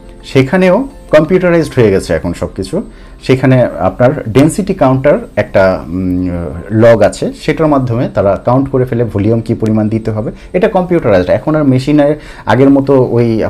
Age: 50-69